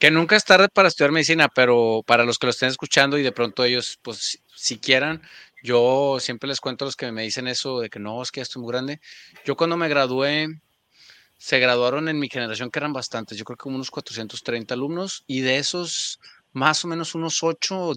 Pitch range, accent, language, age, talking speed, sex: 120-145 Hz, Mexican, Spanish, 30-49, 225 wpm, male